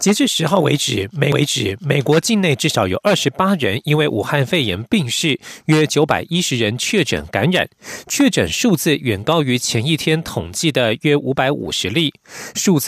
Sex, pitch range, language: male, 135-180 Hz, German